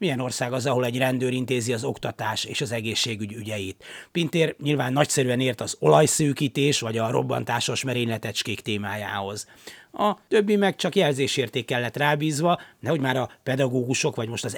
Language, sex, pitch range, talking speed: Hungarian, male, 115-145 Hz, 155 wpm